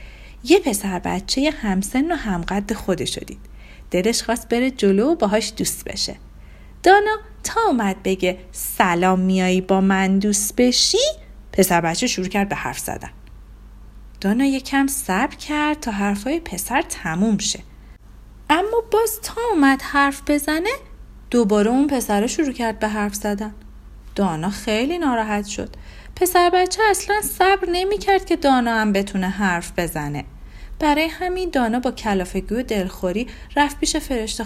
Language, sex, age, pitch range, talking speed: Persian, female, 40-59, 205-310 Hz, 145 wpm